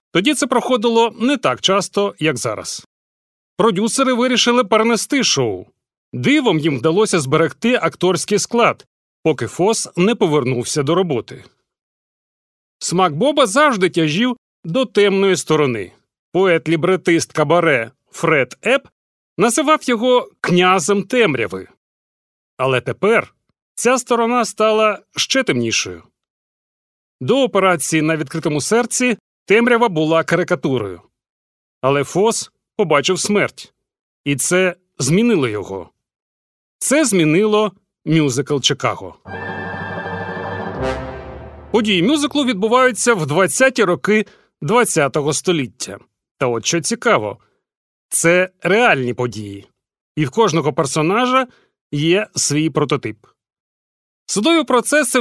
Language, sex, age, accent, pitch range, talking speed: Ukrainian, male, 40-59, native, 150-235 Hz, 100 wpm